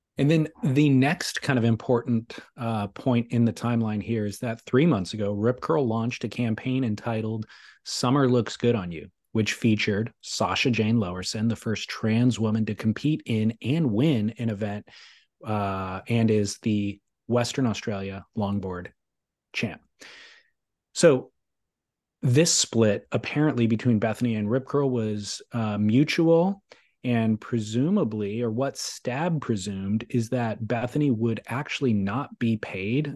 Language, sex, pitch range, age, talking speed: English, male, 105-125 Hz, 30-49, 145 wpm